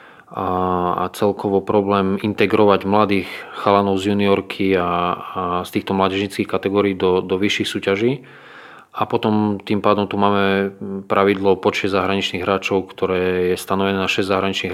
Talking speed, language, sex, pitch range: 140 wpm, Slovak, male, 95-100 Hz